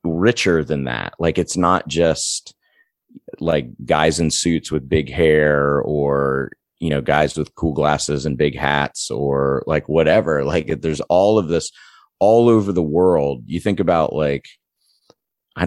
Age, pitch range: 30-49, 75-90 Hz